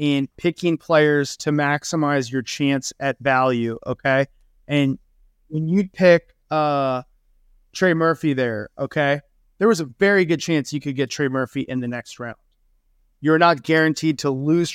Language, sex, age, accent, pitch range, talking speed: English, male, 30-49, American, 140-175 Hz, 160 wpm